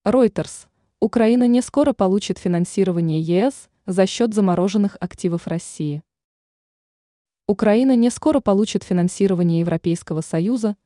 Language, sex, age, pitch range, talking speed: Russian, female, 20-39, 175-220 Hz, 105 wpm